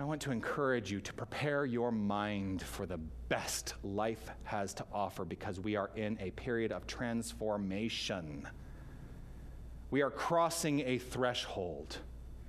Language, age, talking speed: English, 40-59, 140 wpm